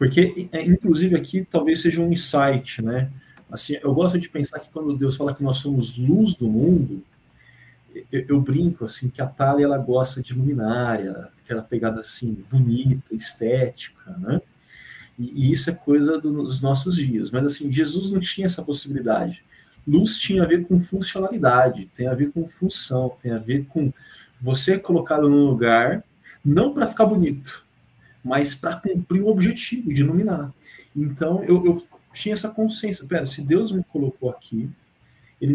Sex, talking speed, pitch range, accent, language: male, 165 wpm, 125-170 Hz, Brazilian, Portuguese